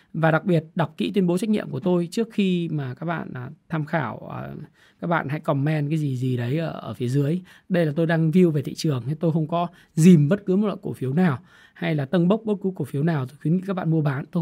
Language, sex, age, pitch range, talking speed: Vietnamese, male, 20-39, 150-195 Hz, 270 wpm